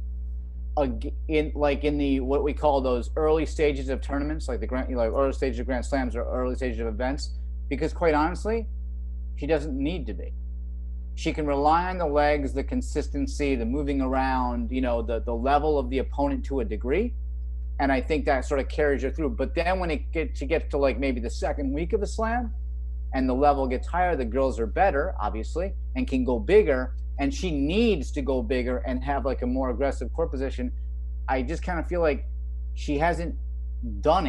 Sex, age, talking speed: male, 30-49, 210 wpm